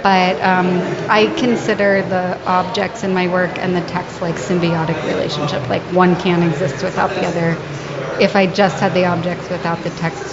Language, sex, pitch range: English, female, 180-195 Hz